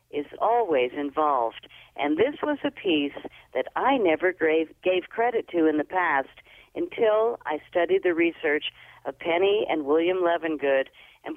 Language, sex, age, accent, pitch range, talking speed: English, female, 50-69, American, 155-240 Hz, 155 wpm